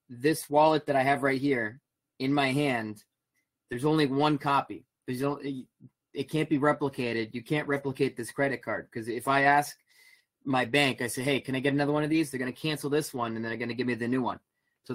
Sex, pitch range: male, 120-140 Hz